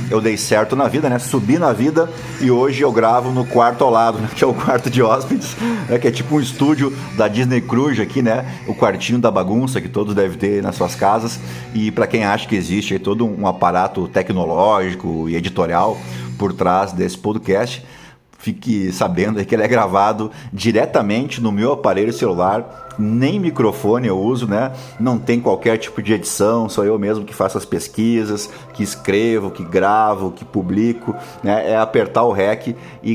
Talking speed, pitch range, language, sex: 190 wpm, 100-120 Hz, Portuguese, male